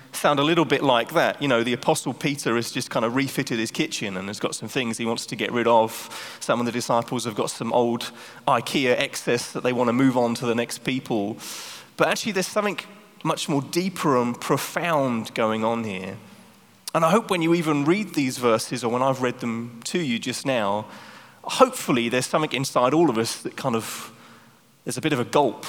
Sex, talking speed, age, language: male, 220 wpm, 30-49, English